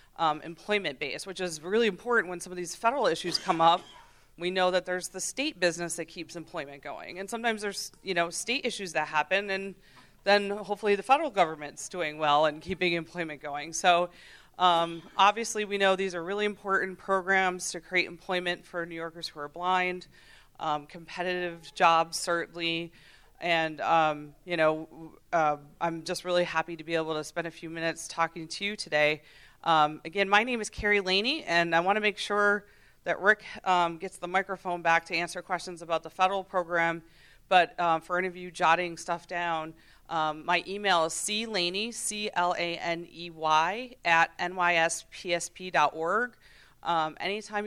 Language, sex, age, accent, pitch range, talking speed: English, female, 30-49, American, 165-190 Hz, 170 wpm